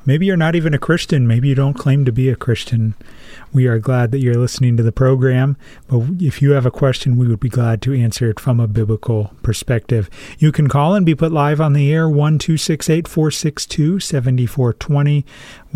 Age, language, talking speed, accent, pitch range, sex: 40-59, English, 195 wpm, American, 120-145 Hz, male